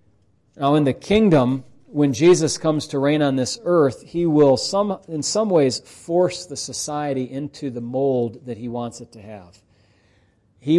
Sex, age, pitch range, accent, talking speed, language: male, 40-59, 120-160 Hz, American, 170 wpm, English